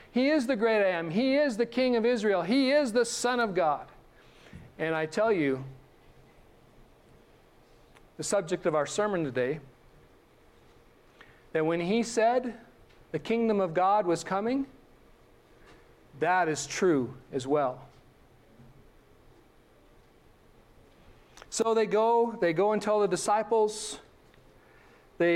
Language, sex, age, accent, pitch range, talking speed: English, male, 40-59, American, 170-225 Hz, 125 wpm